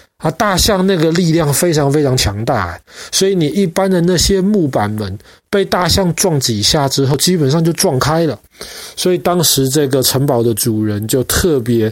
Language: Chinese